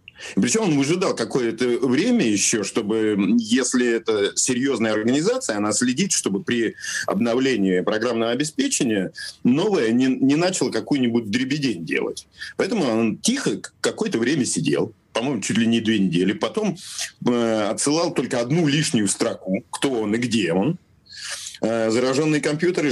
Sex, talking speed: male, 135 wpm